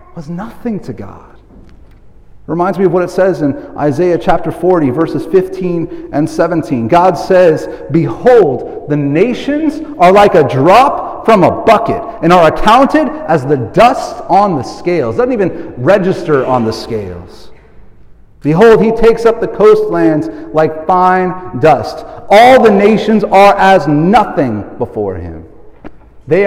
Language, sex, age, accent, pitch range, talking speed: English, male, 40-59, American, 120-170 Hz, 145 wpm